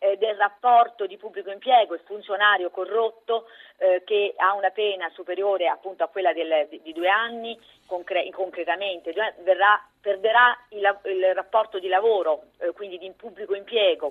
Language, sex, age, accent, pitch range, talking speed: Italian, female, 40-59, native, 175-225 Hz, 150 wpm